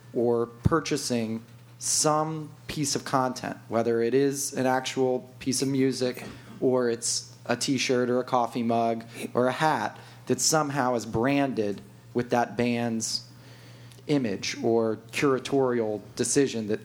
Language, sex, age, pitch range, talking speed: English, male, 30-49, 115-135 Hz, 130 wpm